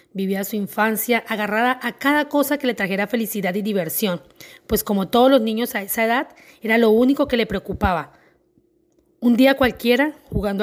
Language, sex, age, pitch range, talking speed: Spanish, female, 30-49, 210-260 Hz, 175 wpm